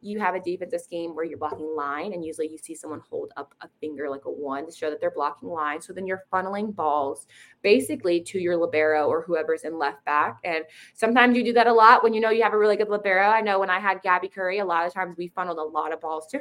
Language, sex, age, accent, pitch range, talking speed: English, female, 20-39, American, 165-225 Hz, 275 wpm